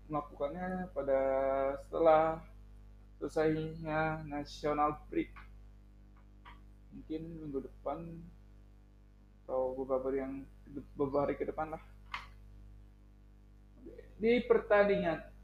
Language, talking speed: Indonesian, 75 wpm